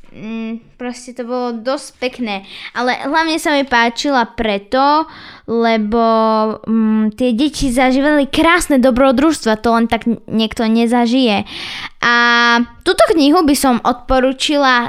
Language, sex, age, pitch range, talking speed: Slovak, female, 10-29, 230-290 Hz, 115 wpm